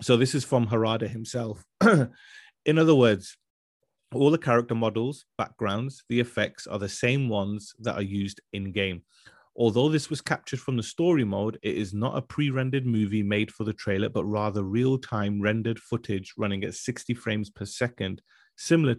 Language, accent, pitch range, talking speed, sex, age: English, British, 105-125 Hz, 175 wpm, male, 30-49